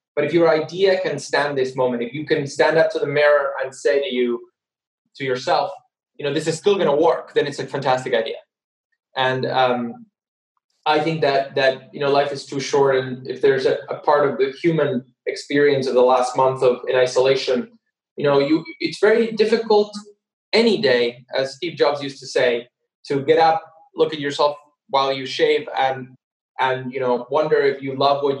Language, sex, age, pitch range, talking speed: English, male, 20-39, 135-185 Hz, 205 wpm